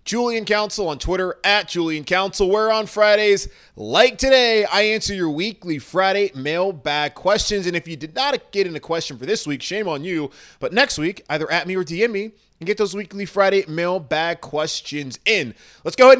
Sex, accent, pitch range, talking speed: male, American, 155-215 Hz, 200 wpm